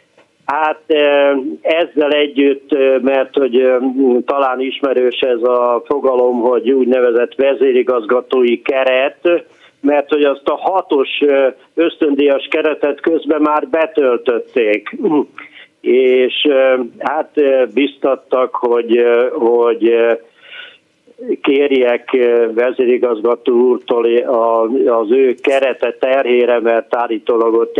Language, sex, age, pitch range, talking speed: Hungarian, male, 50-69, 120-150 Hz, 85 wpm